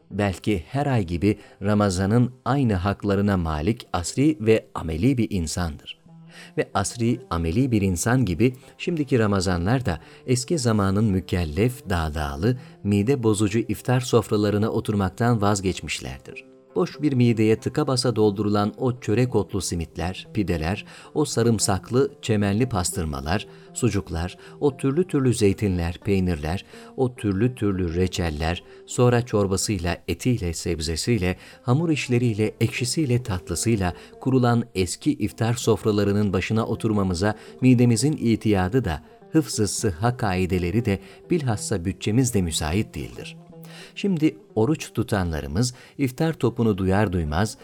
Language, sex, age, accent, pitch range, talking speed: Turkish, male, 50-69, native, 95-125 Hz, 110 wpm